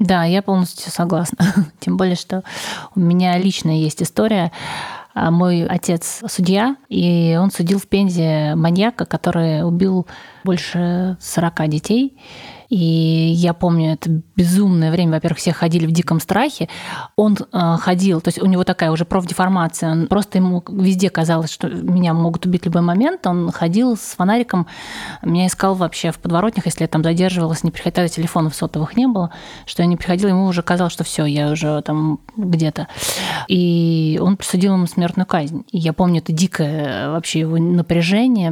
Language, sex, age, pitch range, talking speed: Russian, female, 20-39, 165-190 Hz, 165 wpm